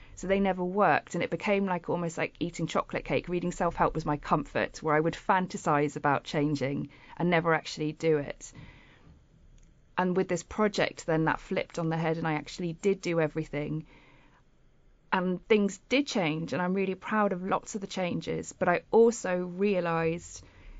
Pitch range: 160-200 Hz